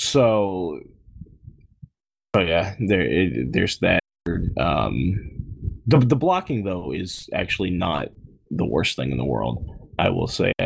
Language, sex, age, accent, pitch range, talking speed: English, male, 20-39, American, 90-110 Hz, 135 wpm